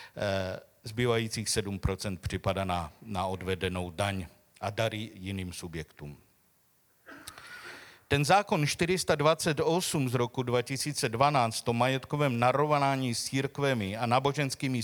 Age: 50-69